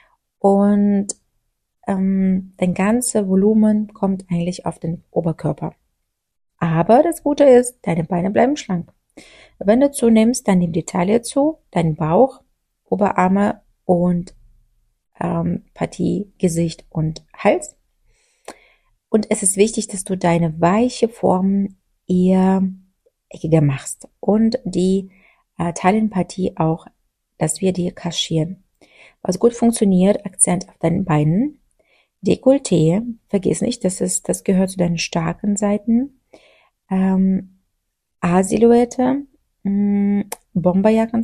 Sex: female